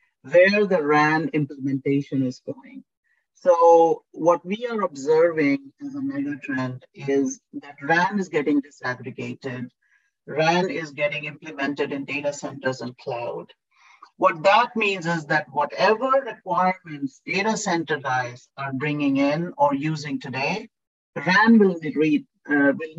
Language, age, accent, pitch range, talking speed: English, 50-69, Indian, 145-205 Hz, 135 wpm